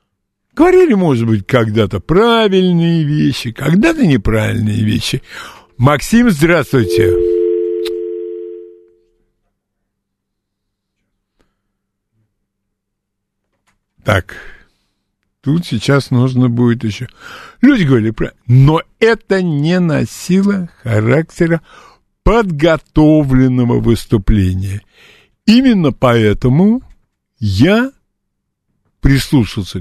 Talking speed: 60 wpm